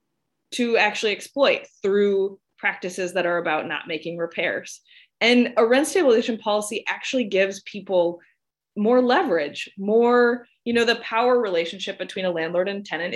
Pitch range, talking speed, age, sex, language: 175-225 Hz, 145 wpm, 20-39, female, English